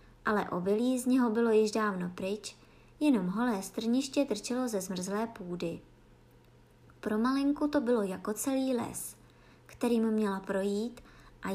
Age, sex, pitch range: 20-39, male, 200-275 Hz